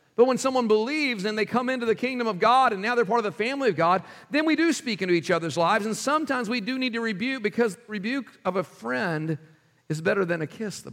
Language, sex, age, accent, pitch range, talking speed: English, male, 50-69, American, 155-210 Hz, 260 wpm